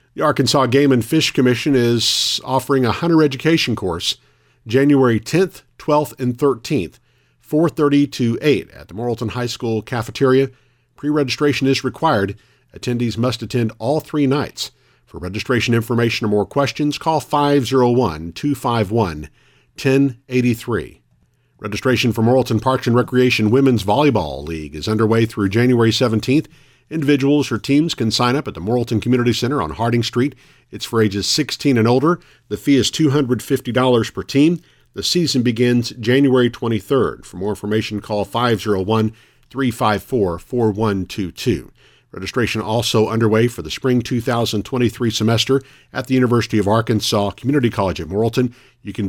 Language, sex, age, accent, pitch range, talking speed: English, male, 50-69, American, 110-135 Hz, 135 wpm